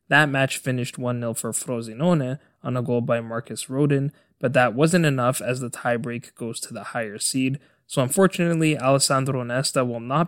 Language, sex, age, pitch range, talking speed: English, male, 20-39, 120-140 Hz, 175 wpm